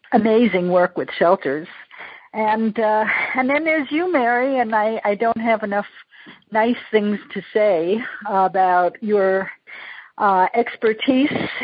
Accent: American